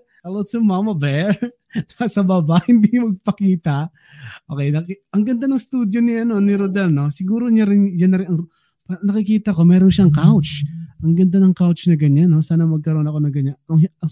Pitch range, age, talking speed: 155-200 Hz, 20-39, 185 wpm